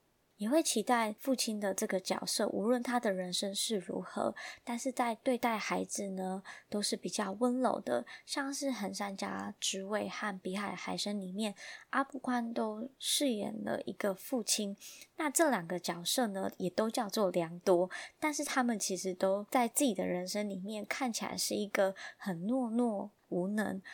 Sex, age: male, 20-39